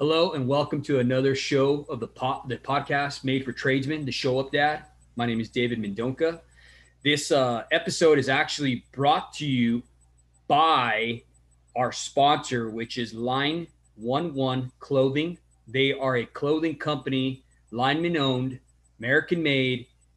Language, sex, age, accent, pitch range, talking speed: English, male, 30-49, American, 110-140 Hz, 135 wpm